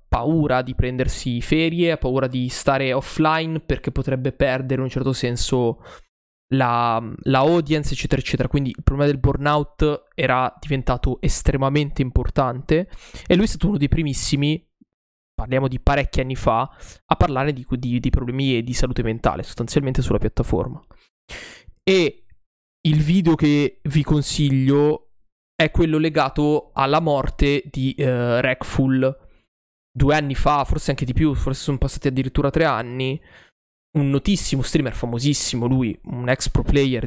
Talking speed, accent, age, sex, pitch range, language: 145 wpm, native, 20-39, male, 120-145 Hz, Italian